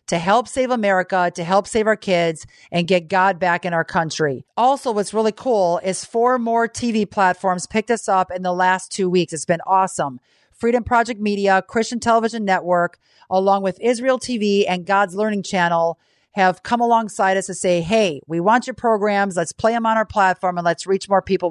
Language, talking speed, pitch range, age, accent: English, 200 wpm, 180-230 Hz, 40-59, American